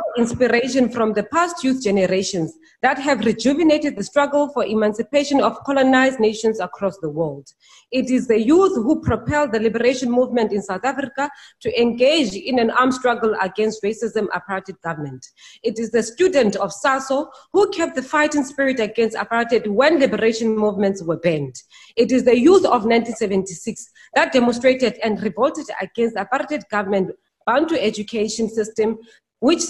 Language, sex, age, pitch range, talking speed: English, female, 30-49, 205-270 Hz, 155 wpm